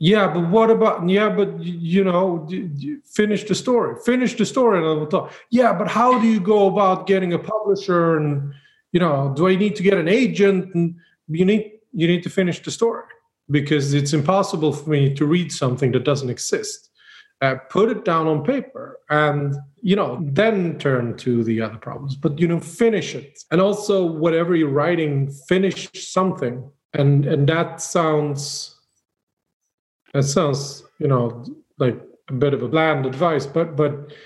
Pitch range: 145-190 Hz